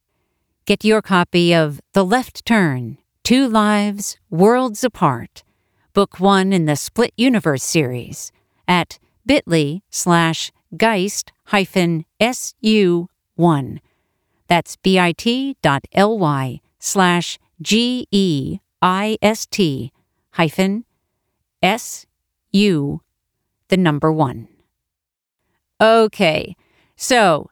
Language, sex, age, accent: English, female, 50-69, American